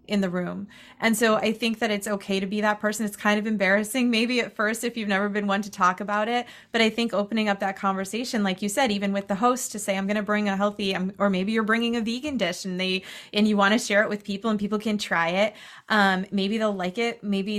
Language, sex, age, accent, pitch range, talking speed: English, female, 20-39, American, 195-230 Hz, 275 wpm